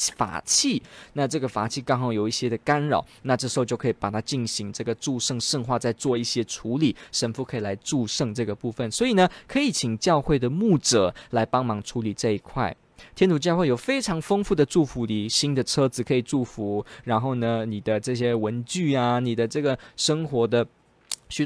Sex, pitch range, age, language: male, 115-155 Hz, 20-39, Chinese